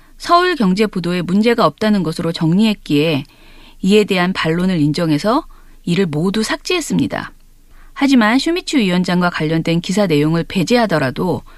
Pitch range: 170-245 Hz